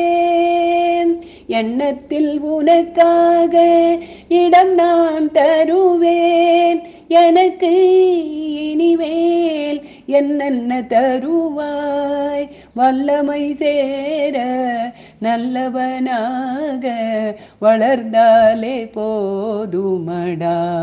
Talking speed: 35 wpm